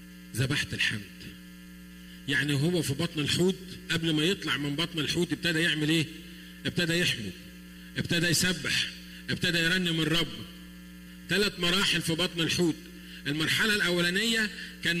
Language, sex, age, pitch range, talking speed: Arabic, male, 50-69, 150-205 Hz, 125 wpm